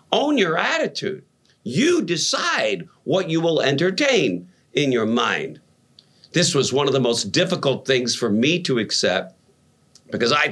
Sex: male